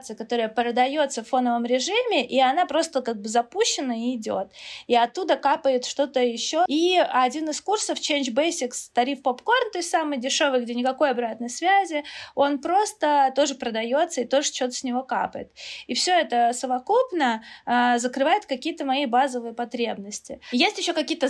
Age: 20-39